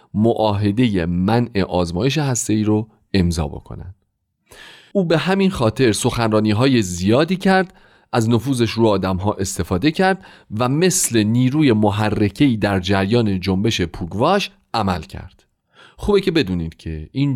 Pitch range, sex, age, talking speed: 95-140 Hz, male, 40-59, 130 wpm